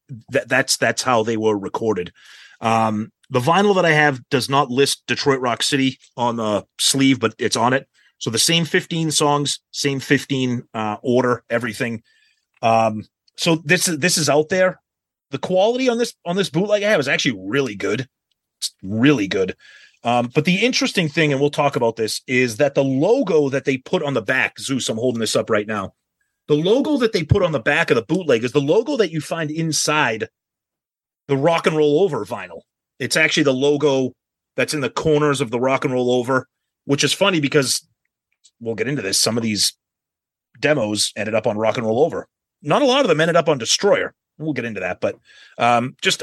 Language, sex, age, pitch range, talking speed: English, male, 30-49, 115-155 Hz, 205 wpm